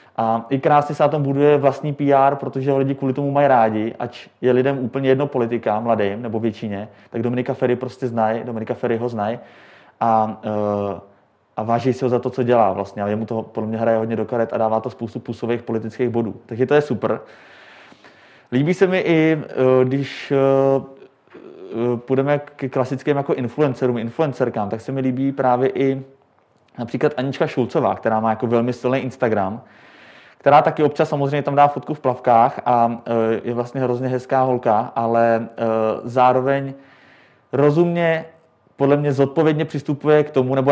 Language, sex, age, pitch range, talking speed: Czech, male, 30-49, 115-140 Hz, 170 wpm